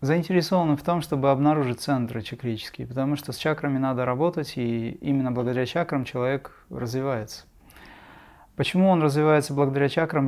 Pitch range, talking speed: 135-165 Hz, 140 wpm